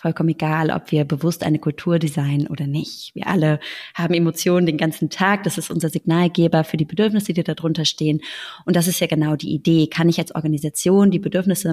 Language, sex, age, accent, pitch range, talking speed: German, female, 20-39, German, 160-185 Hz, 210 wpm